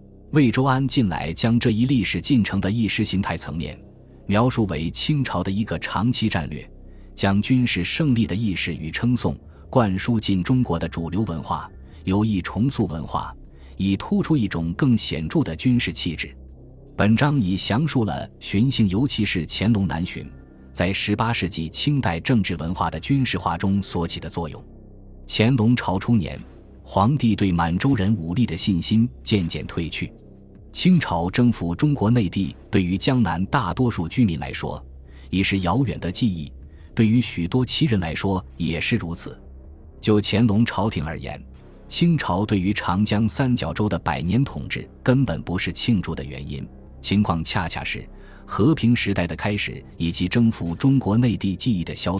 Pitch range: 85-115 Hz